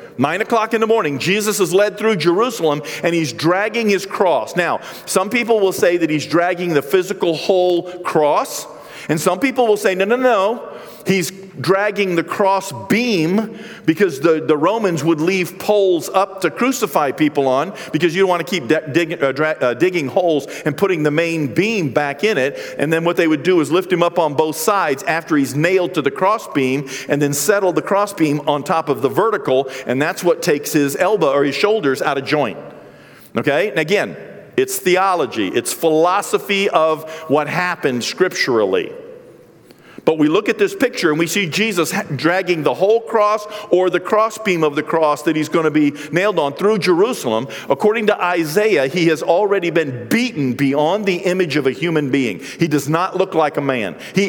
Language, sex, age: English, male, 50-69